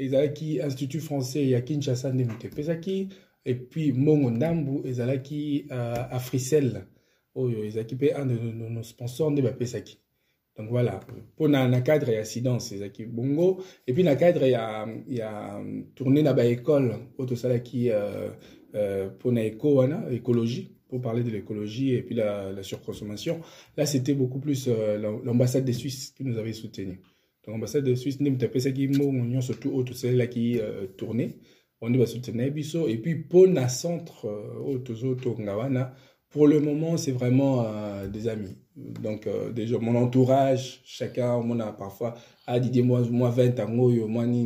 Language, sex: French, male